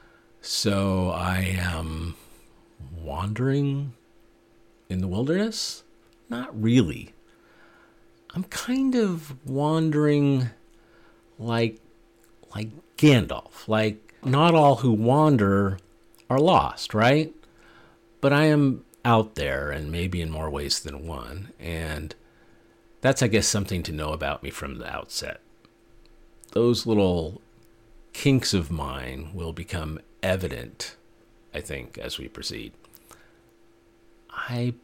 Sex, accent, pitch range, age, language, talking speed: male, American, 85-115 Hz, 50-69, English, 105 wpm